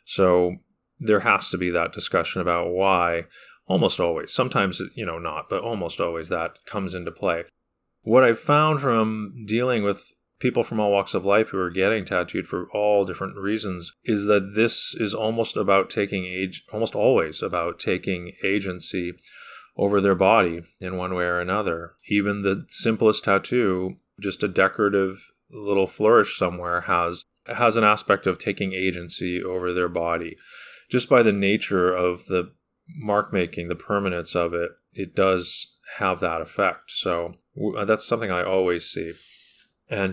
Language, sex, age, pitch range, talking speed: English, male, 30-49, 90-105 Hz, 160 wpm